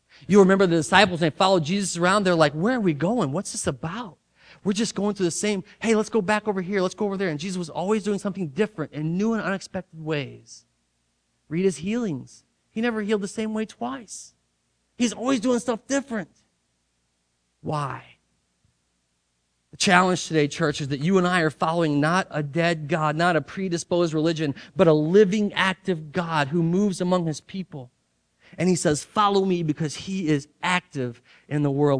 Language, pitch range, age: English, 135-190 Hz, 30-49